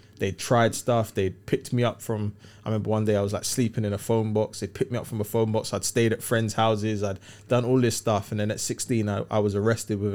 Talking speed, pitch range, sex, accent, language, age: 285 wpm, 100-115 Hz, male, British, English, 20-39